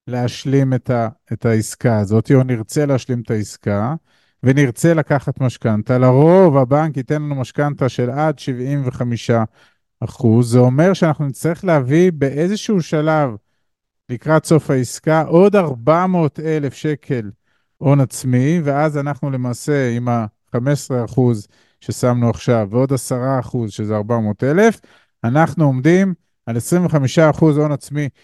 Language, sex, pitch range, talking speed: Hebrew, male, 120-155 Hz, 115 wpm